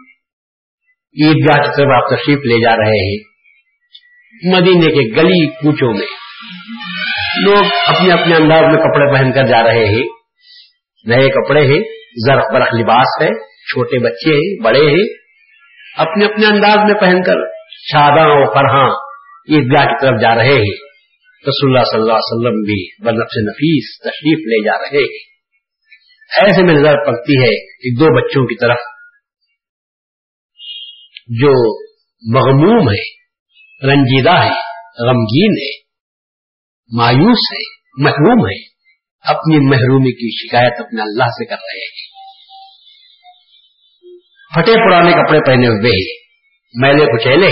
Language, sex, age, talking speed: Urdu, male, 50-69, 130 wpm